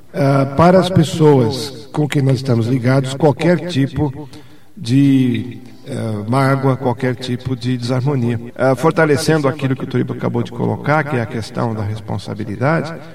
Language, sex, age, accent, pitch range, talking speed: Portuguese, male, 50-69, Brazilian, 120-150 Hz, 150 wpm